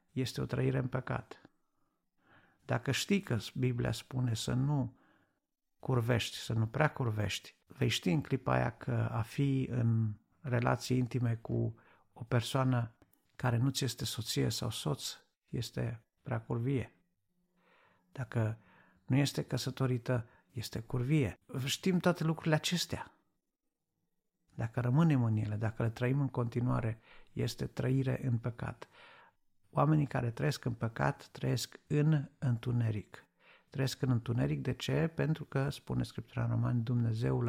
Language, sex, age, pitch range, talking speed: Romanian, male, 50-69, 115-140 Hz, 130 wpm